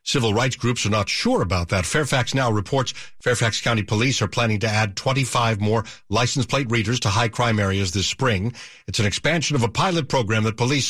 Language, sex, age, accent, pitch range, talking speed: English, male, 50-69, American, 110-135 Hz, 210 wpm